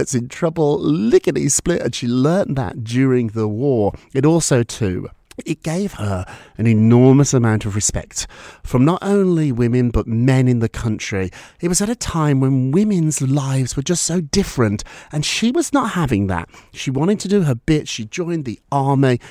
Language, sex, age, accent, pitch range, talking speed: English, male, 40-59, British, 110-160 Hz, 185 wpm